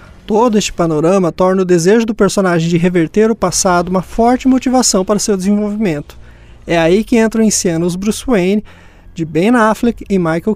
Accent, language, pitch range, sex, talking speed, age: Brazilian, Portuguese, 175-220 Hz, male, 180 wpm, 20-39